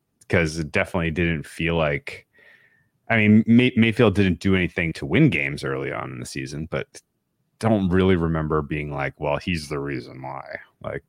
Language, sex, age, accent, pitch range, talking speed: English, male, 30-49, American, 75-95 Hz, 175 wpm